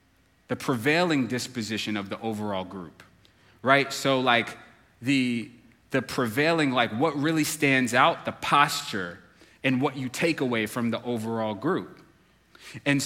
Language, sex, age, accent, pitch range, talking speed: English, male, 30-49, American, 115-150 Hz, 140 wpm